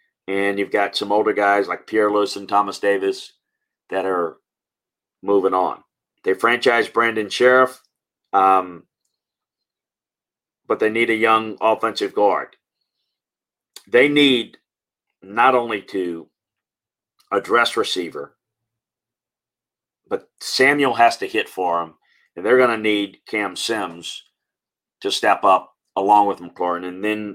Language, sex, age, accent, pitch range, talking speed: English, male, 40-59, American, 100-125 Hz, 125 wpm